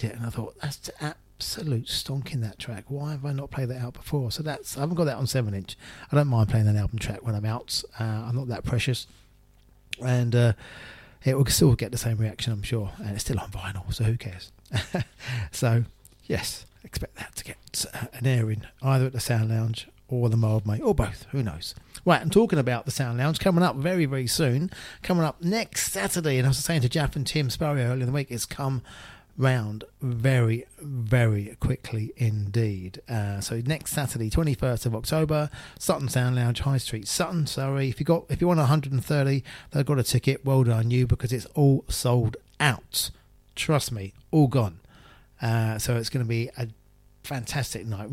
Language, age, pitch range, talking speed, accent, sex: English, 40-59, 110-140 Hz, 205 wpm, British, male